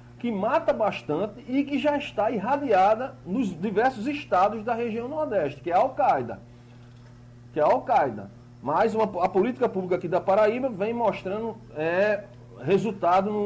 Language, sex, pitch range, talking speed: Portuguese, male, 140-215 Hz, 140 wpm